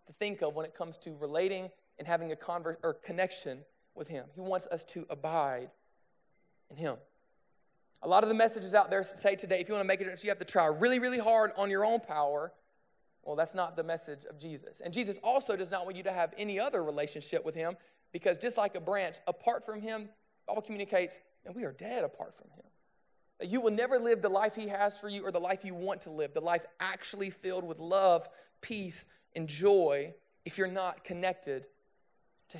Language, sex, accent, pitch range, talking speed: English, male, American, 165-205 Hz, 215 wpm